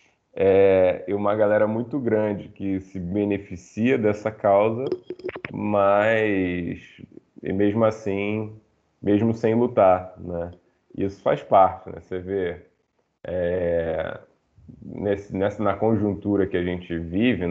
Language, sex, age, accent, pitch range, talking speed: Portuguese, male, 20-39, Brazilian, 85-105 Hz, 115 wpm